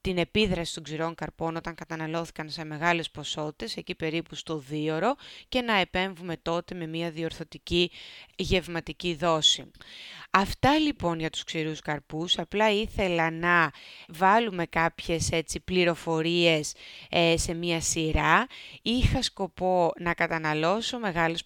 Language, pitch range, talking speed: Greek, 155-175 Hz, 125 wpm